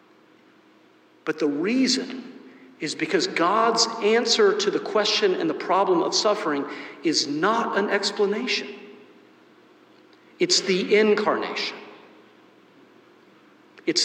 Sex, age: male, 50-69